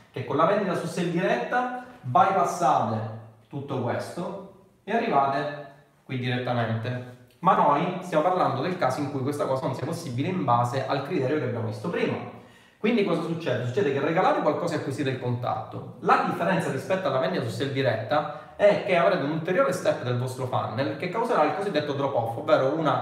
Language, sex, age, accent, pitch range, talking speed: Italian, male, 30-49, native, 120-180 Hz, 185 wpm